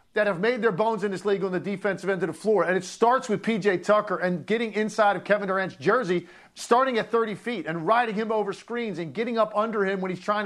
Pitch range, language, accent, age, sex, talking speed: 195-230 Hz, English, American, 40-59, male, 260 wpm